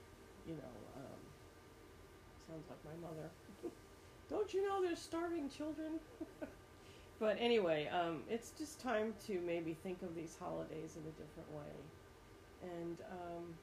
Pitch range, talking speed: 150-200 Hz, 135 wpm